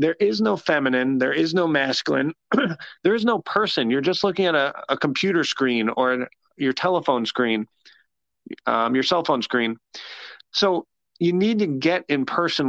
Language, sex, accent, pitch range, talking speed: English, male, American, 130-175 Hz, 170 wpm